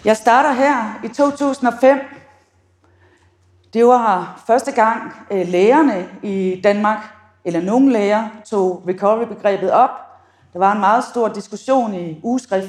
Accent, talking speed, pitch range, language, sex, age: native, 125 wpm, 180-240 Hz, Danish, female, 40-59